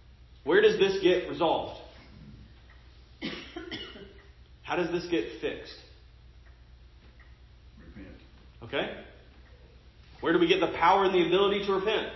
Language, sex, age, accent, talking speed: English, male, 30-49, American, 110 wpm